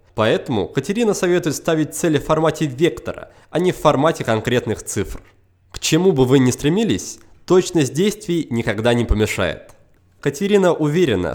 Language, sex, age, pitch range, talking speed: Russian, male, 20-39, 115-170 Hz, 145 wpm